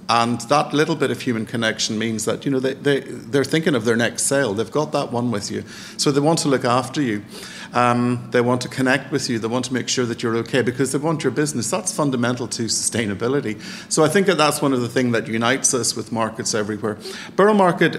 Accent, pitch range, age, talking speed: Irish, 110-135 Hz, 50-69, 245 wpm